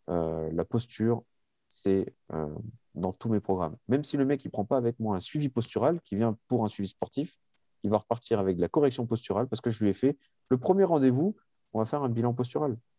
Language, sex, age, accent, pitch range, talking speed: French, male, 30-49, French, 85-120 Hz, 230 wpm